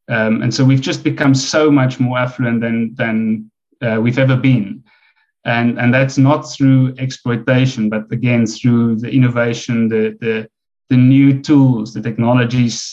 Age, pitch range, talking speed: 30-49, 120-130 Hz, 160 wpm